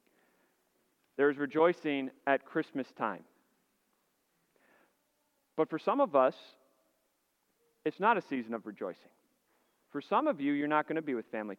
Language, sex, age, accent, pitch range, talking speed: English, male, 40-59, American, 150-205 Hz, 145 wpm